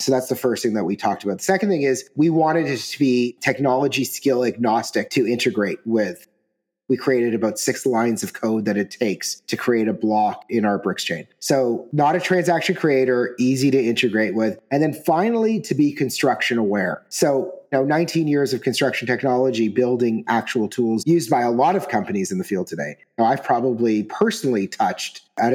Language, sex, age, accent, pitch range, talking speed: English, male, 30-49, American, 115-140 Hz, 195 wpm